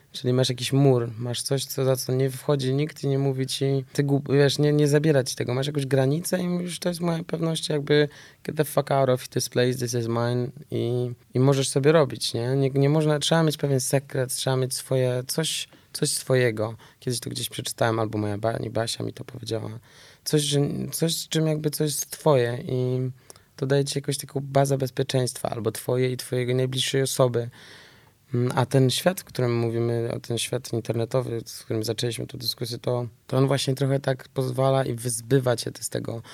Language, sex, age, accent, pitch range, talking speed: Polish, male, 20-39, native, 125-140 Hz, 205 wpm